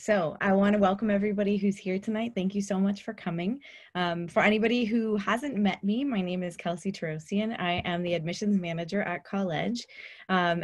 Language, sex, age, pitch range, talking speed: English, female, 20-39, 185-220 Hz, 195 wpm